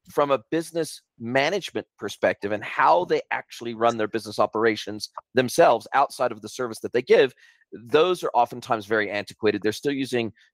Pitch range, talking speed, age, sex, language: 110-135 Hz, 165 wpm, 40-59, male, English